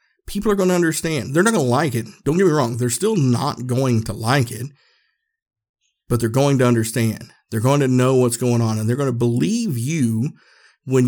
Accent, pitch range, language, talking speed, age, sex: American, 120-145 Hz, English, 220 wpm, 50-69, male